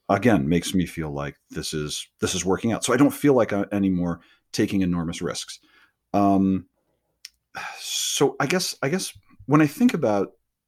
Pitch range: 85-105 Hz